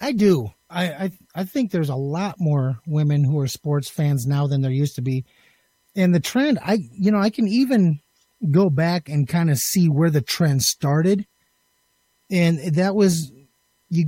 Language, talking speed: English, 190 wpm